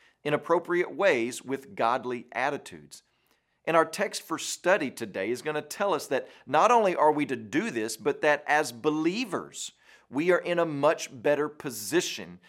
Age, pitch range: 40-59, 120-165 Hz